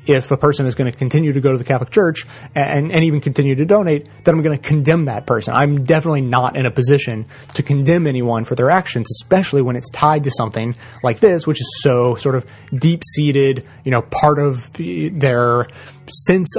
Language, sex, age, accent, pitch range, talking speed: English, male, 30-49, American, 125-155 Hz, 215 wpm